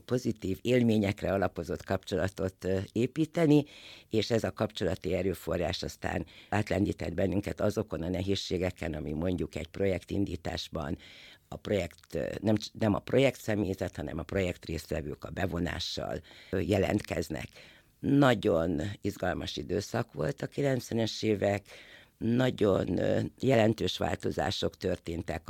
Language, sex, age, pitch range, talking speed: Hungarian, female, 60-79, 95-115 Hz, 100 wpm